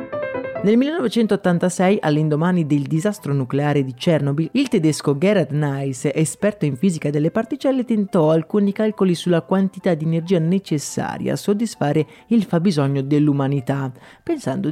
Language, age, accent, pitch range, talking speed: Italian, 30-49, native, 145-205 Hz, 125 wpm